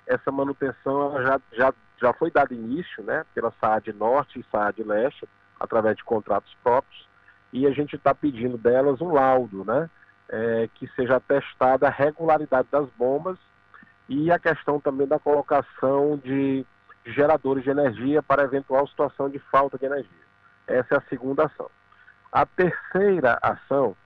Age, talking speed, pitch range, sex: 40-59, 155 wpm, 120-145 Hz, male